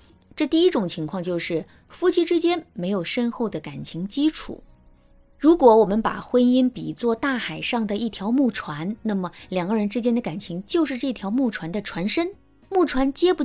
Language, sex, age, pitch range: Chinese, female, 20-39, 180-270 Hz